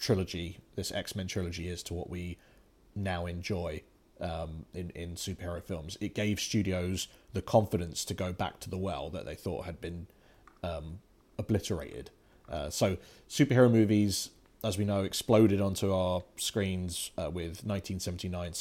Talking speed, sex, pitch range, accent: 150 wpm, male, 90-115 Hz, British